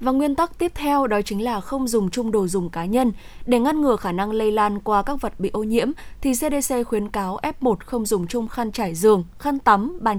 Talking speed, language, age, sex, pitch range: 245 wpm, Vietnamese, 10-29, female, 205-260 Hz